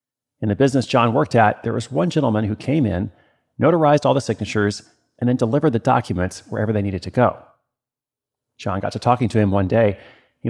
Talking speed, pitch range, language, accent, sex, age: 205 wpm, 105-130 Hz, English, American, male, 40-59